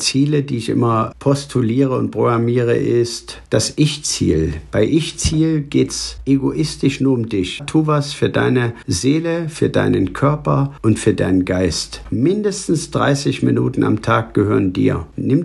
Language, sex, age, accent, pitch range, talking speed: German, male, 50-69, German, 115-140 Hz, 150 wpm